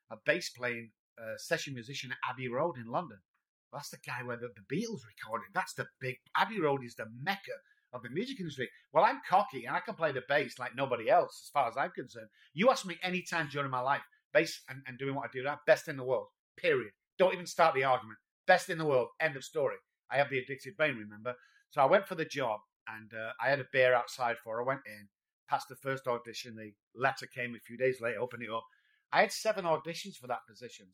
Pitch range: 120-165 Hz